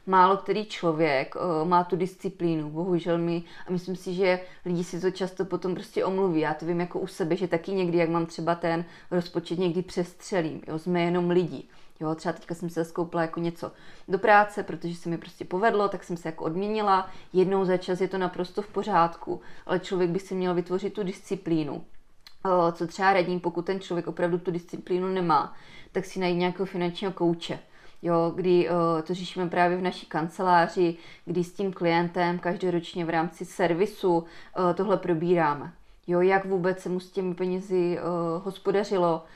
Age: 20-39